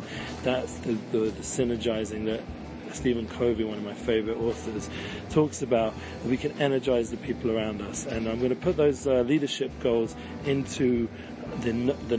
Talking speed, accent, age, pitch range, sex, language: 170 wpm, British, 40-59, 110-125 Hz, male, English